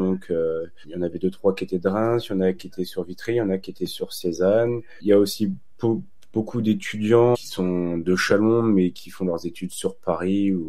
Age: 30-49